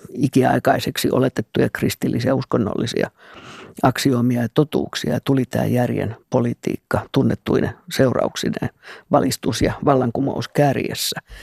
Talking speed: 90 wpm